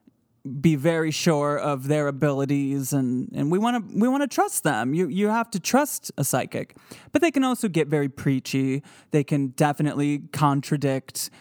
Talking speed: 180 wpm